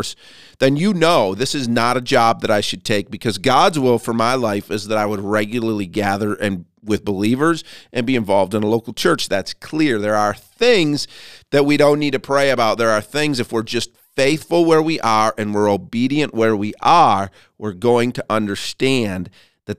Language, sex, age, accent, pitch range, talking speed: English, male, 40-59, American, 105-150 Hz, 205 wpm